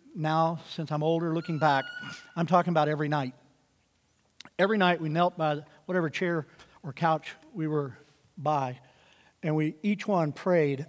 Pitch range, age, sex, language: 150-170 Hz, 50-69, male, English